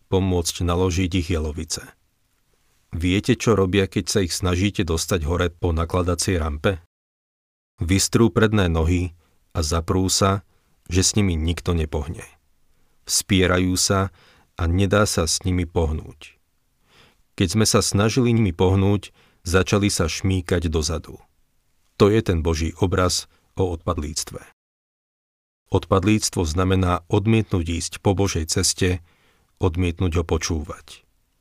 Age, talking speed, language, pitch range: 40-59, 120 wpm, Slovak, 85-100 Hz